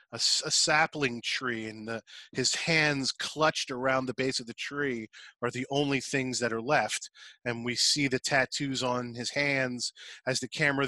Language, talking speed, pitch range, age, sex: English, 170 wpm, 125-155 Hz, 30-49, male